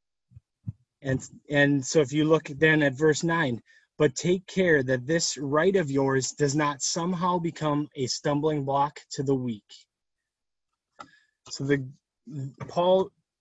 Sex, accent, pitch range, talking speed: male, American, 135-165 Hz, 140 wpm